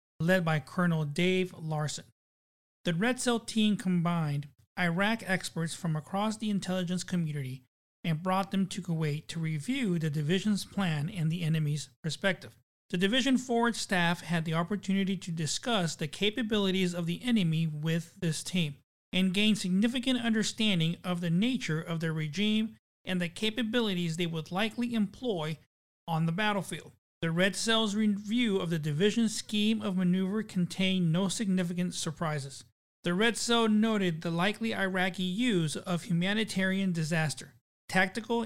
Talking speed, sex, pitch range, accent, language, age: 145 wpm, male, 165-215 Hz, American, English, 40-59